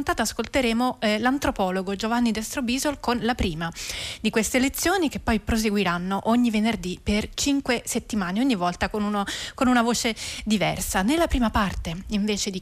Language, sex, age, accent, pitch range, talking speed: Italian, female, 30-49, native, 205-260 Hz, 150 wpm